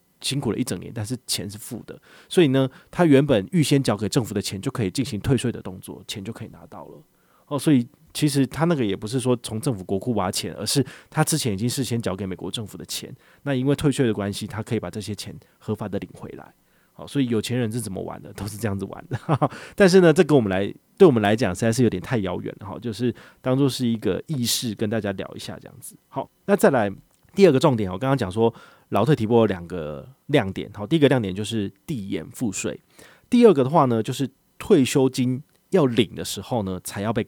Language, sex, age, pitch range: Chinese, male, 30-49, 105-140 Hz